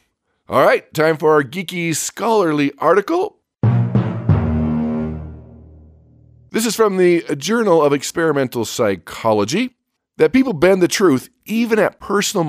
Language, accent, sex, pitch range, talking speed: English, American, male, 130-180 Hz, 115 wpm